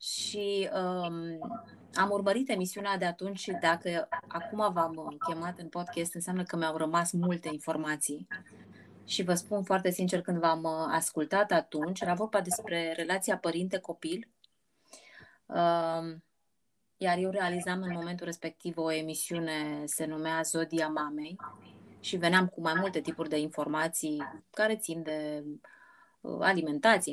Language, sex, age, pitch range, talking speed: Romanian, female, 20-39, 160-195 Hz, 125 wpm